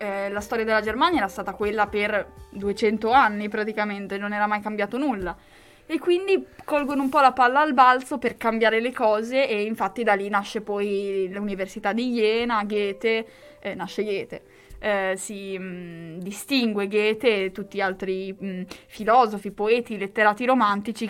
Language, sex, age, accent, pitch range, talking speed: Italian, female, 20-39, native, 205-250 Hz, 160 wpm